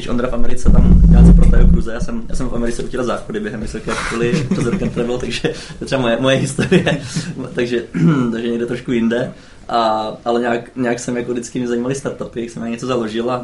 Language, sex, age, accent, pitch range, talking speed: Czech, male, 20-39, native, 110-125 Hz, 205 wpm